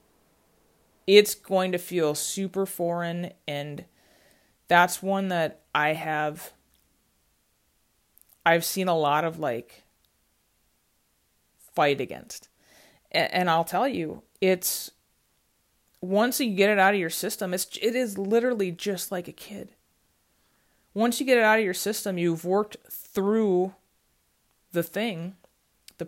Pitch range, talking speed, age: 160-200 Hz, 125 wpm, 30-49